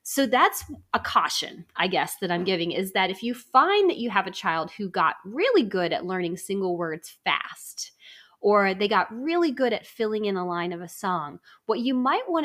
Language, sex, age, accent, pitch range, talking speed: English, female, 20-39, American, 185-230 Hz, 215 wpm